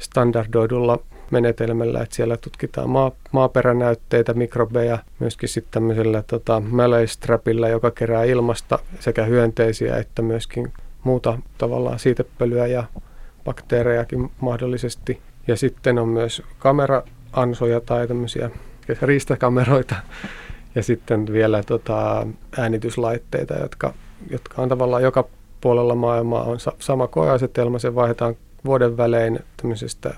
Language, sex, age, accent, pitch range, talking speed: Finnish, male, 30-49, native, 115-130 Hz, 105 wpm